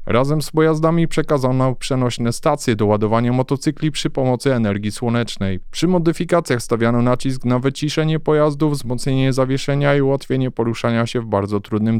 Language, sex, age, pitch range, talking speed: Polish, male, 20-39, 120-155 Hz, 145 wpm